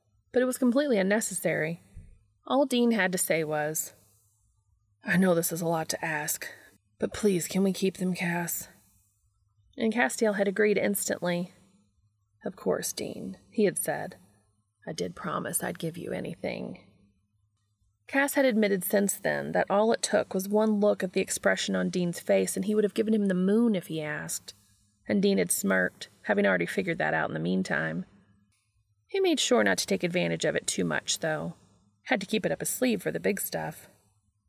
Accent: American